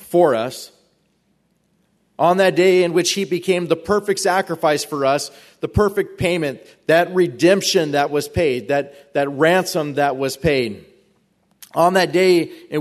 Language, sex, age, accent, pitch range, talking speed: English, male, 30-49, American, 140-190 Hz, 150 wpm